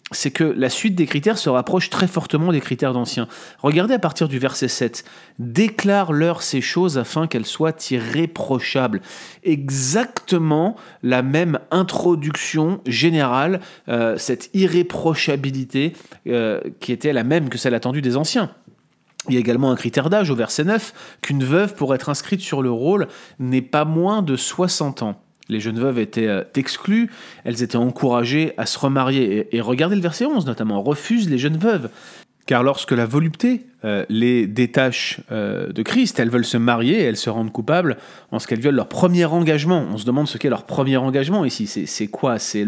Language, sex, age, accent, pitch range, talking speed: French, male, 30-49, French, 120-170 Hz, 180 wpm